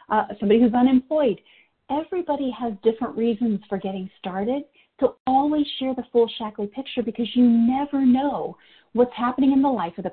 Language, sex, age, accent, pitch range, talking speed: English, female, 40-59, American, 205-270 Hz, 170 wpm